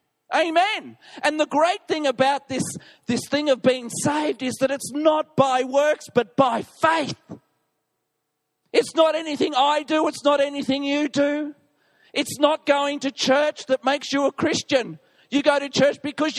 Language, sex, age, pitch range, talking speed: English, male, 40-59, 190-295 Hz, 170 wpm